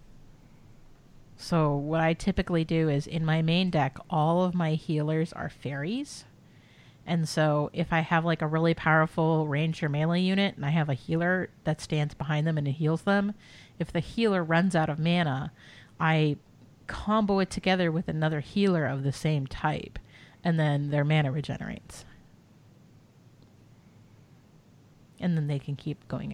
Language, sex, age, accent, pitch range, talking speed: English, female, 30-49, American, 150-200 Hz, 155 wpm